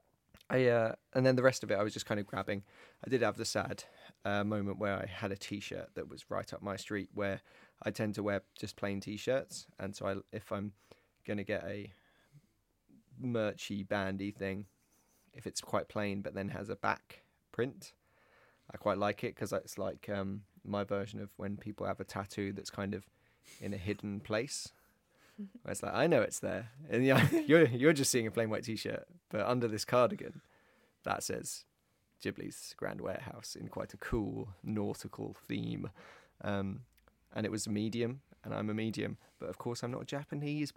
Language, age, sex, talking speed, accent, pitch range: English, 20-39, male, 195 wpm, British, 100-115 Hz